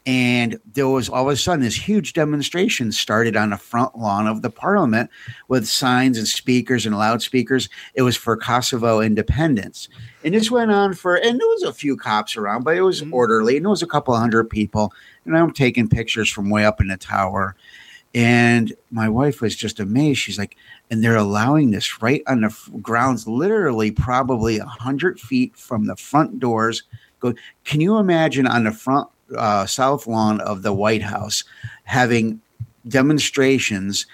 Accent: American